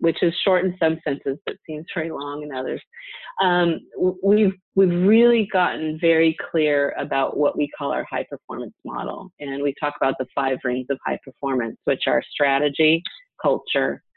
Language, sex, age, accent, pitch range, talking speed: English, female, 30-49, American, 140-185 Hz, 175 wpm